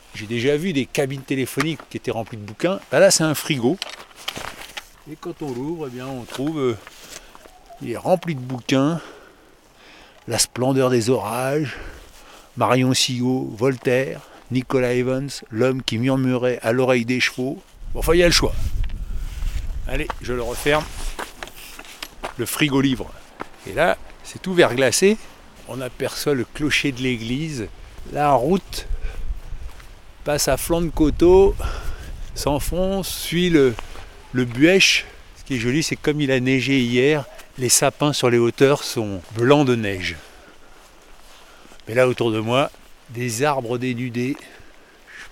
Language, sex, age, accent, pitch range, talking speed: French, male, 60-79, French, 115-150 Hz, 145 wpm